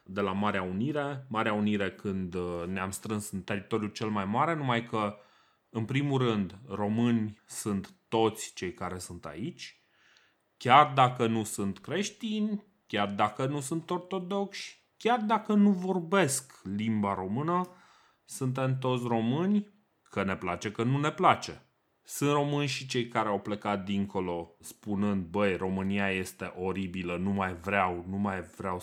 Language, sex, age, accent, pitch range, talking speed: Romanian, male, 30-49, native, 100-145 Hz, 150 wpm